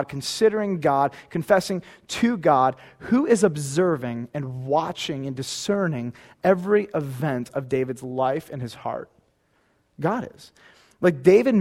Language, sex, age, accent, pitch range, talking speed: English, male, 30-49, American, 135-195 Hz, 125 wpm